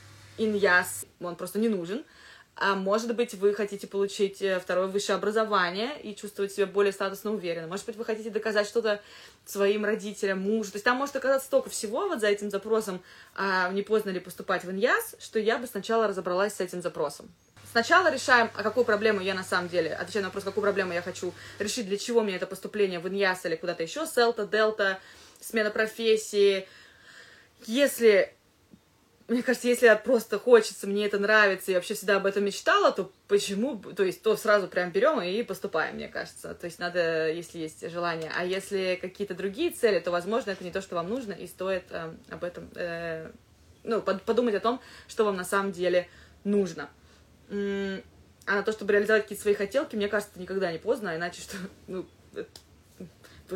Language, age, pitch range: Russian, 20-39, 185-220 Hz